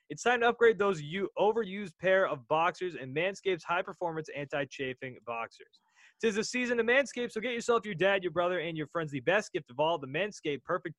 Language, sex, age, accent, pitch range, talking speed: English, male, 20-39, American, 150-210 Hz, 210 wpm